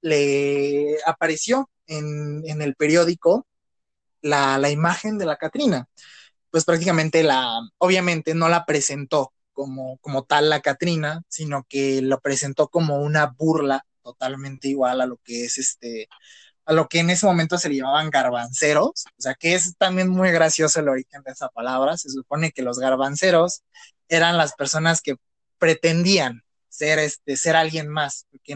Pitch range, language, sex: 135-165 Hz, Spanish, male